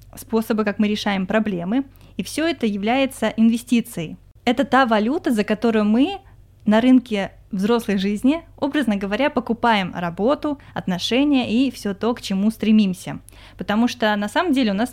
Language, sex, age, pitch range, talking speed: Russian, female, 20-39, 195-240 Hz, 155 wpm